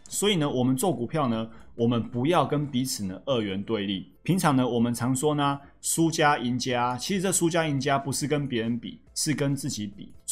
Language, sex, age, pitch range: Chinese, male, 30-49, 115-145 Hz